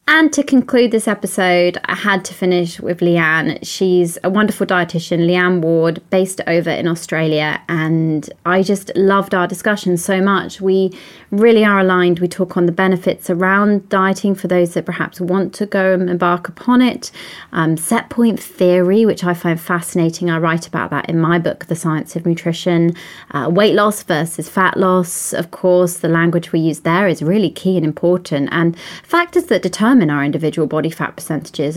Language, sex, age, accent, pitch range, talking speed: English, female, 20-39, British, 160-190 Hz, 185 wpm